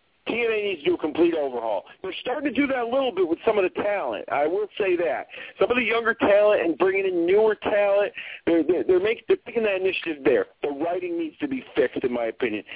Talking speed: 225 wpm